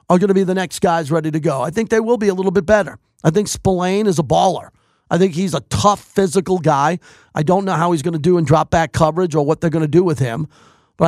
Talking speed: 285 wpm